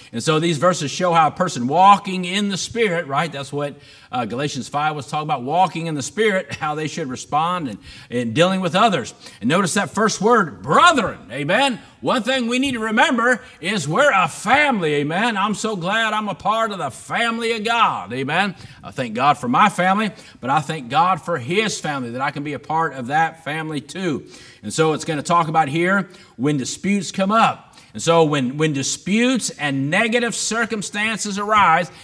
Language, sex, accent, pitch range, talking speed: English, male, American, 160-220 Hz, 200 wpm